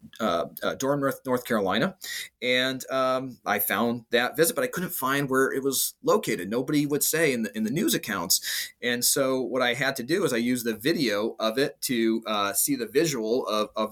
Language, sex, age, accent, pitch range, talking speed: English, male, 30-49, American, 115-135 Hz, 215 wpm